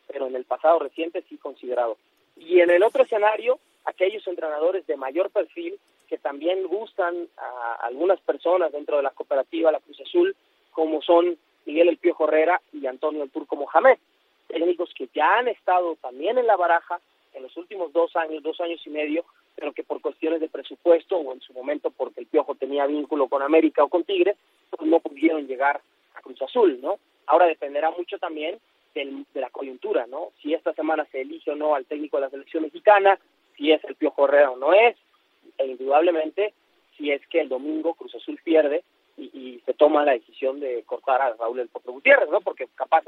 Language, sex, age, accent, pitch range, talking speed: Spanish, male, 30-49, Mexican, 155-205 Hz, 200 wpm